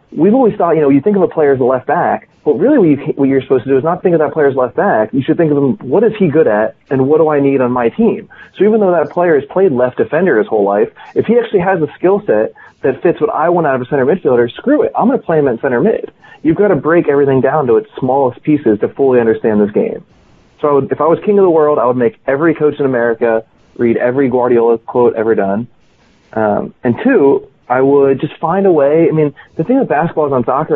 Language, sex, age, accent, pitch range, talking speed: English, male, 30-49, American, 120-165 Hz, 285 wpm